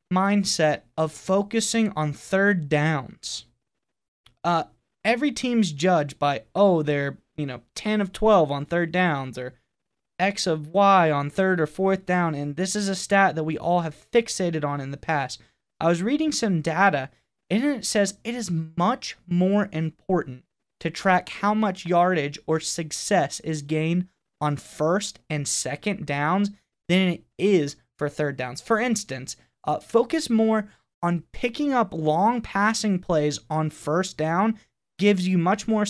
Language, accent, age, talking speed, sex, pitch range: English, American, 20-39, 160 wpm, male, 150-195 Hz